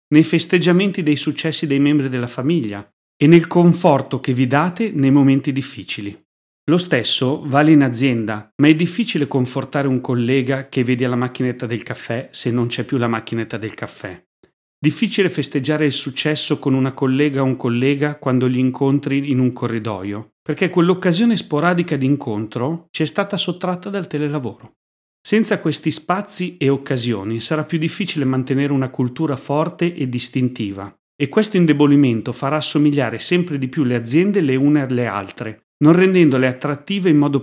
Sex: male